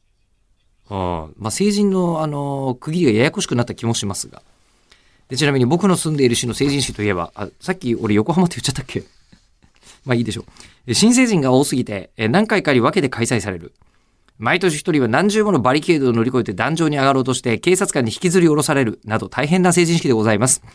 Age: 40-59